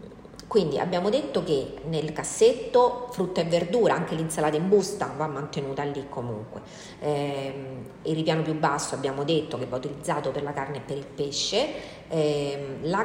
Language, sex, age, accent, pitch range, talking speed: Italian, female, 40-59, native, 140-175 Hz, 165 wpm